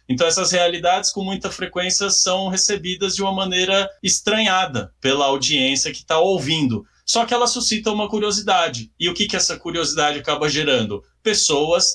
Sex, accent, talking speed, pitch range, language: male, Brazilian, 160 wpm, 125-175 Hz, Portuguese